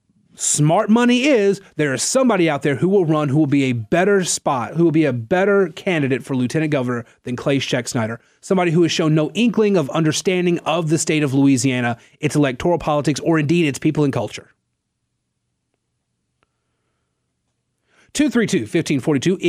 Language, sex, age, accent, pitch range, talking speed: English, male, 30-49, American, 140-185 Hz, 165 wpm